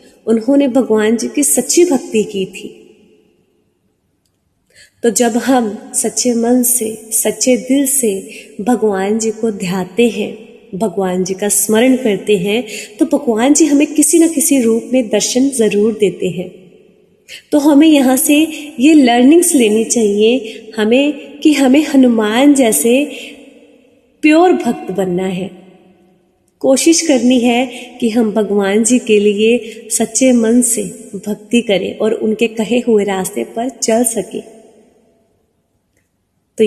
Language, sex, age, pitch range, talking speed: Hindi, female, 20-39, 210-255 Hz, 135 wpm